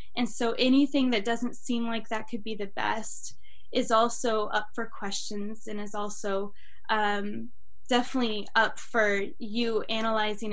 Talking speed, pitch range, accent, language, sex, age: 150 wpm, 205-245 Hz, American, English, female, 10-29